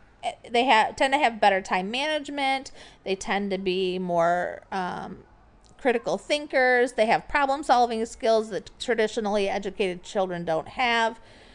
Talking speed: 135 wpm